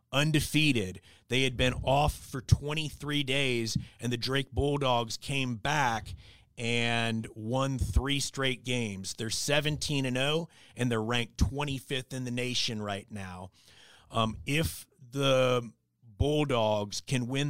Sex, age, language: male, 30-49, English